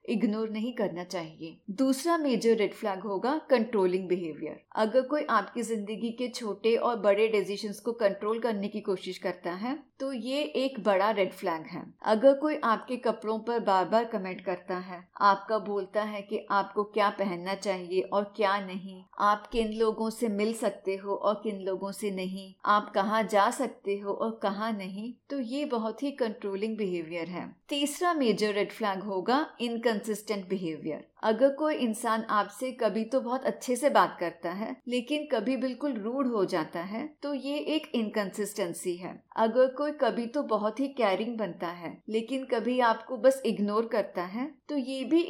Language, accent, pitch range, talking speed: Hindi, native, 200-255 Hz, 170 wpm